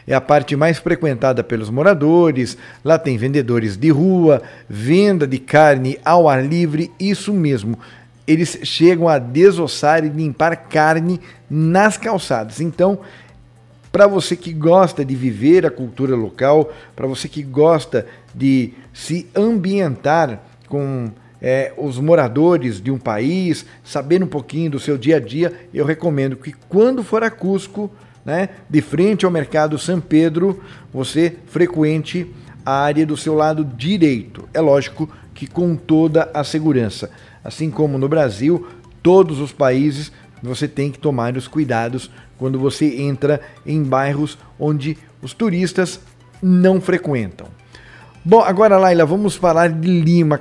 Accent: Brazilian